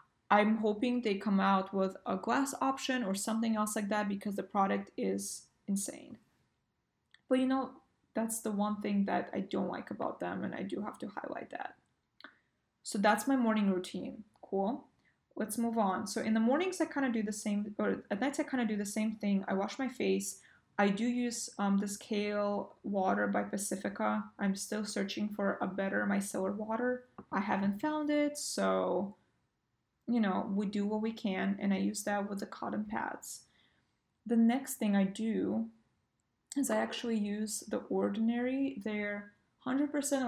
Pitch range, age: 195-230 Hz, 20-39